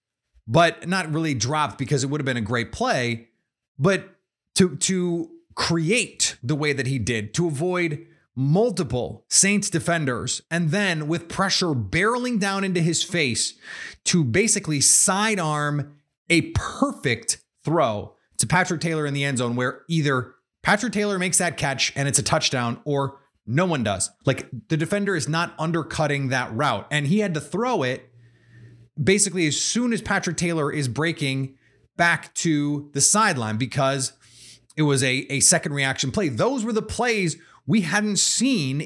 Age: 30-49